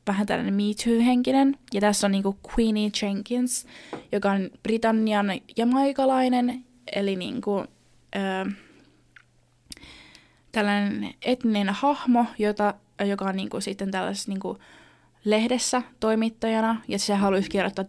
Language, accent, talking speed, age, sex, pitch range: Finnish, native, 115 wpm, 20-39, female, 190-215 Hz